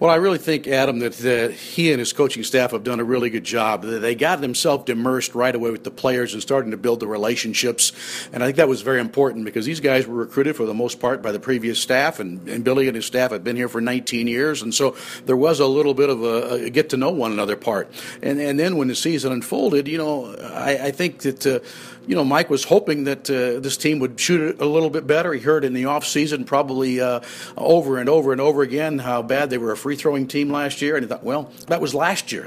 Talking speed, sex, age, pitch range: 255 wpm, male, 50-69, 125-150 Hz